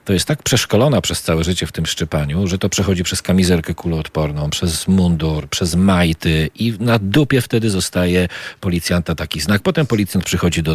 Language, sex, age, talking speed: Polish, male, 40-59, 180 wpm